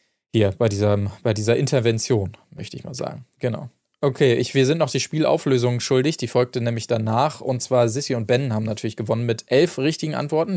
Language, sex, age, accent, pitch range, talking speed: German, male, 20-39, German, 115-135 Hz, 195 wpm